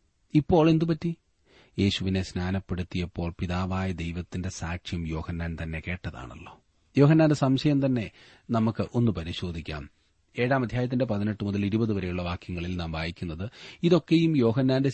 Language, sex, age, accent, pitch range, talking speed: Malayalam, male, 30-49, native, 100-130 Hz, 110 wpm